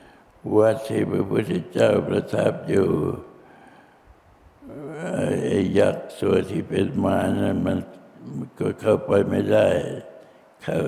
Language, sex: Thai, male